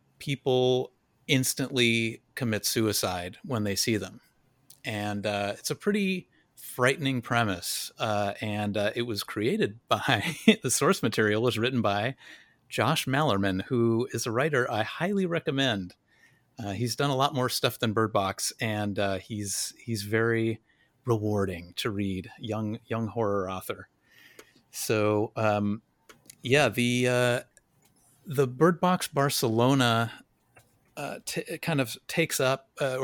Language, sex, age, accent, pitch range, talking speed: English, male, 30-49, American, 105-130 Hz, 135 wpm